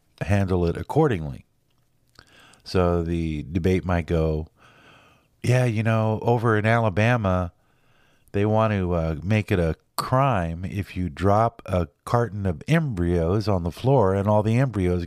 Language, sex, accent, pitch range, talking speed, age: English, male, American, 90-120 Hz, 145 wpm, 50-69